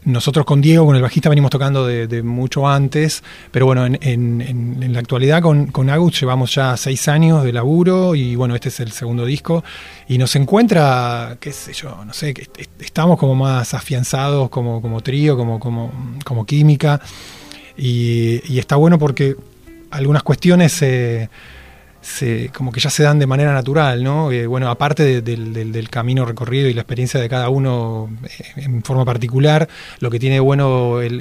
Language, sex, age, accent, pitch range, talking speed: Spanish, male, 20-39, Argentinian, 125-145 Hz, 180 wpm